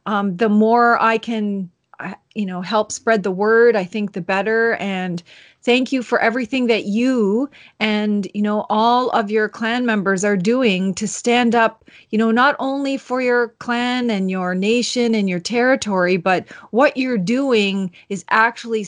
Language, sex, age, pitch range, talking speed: English, female, 30-49, 195-235 Hz, 170 wpm